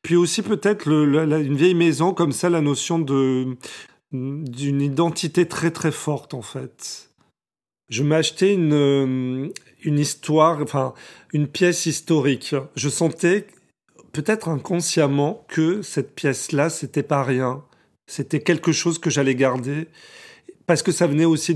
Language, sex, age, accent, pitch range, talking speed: French, male, 40-59, French, 135-165 Hz, 145 wpm